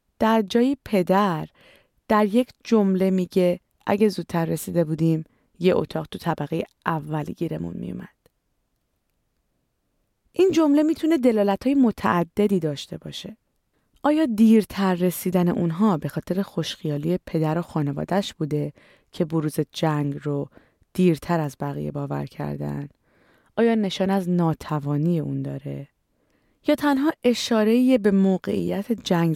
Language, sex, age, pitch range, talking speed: Persian, female, 30-49, 155-215 Hz, 120 wpm